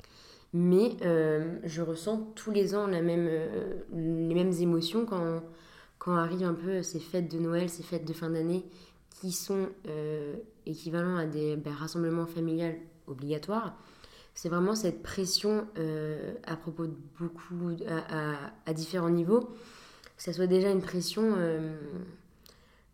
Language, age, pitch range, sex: French, 20-39, 160-185 Hz, female